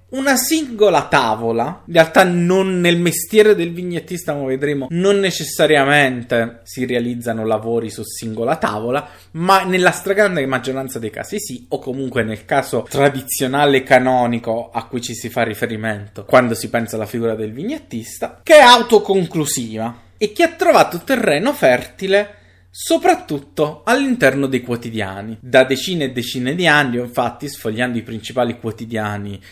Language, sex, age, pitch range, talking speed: Italian, male, 20-39, 115-170 Hz, 140 wpm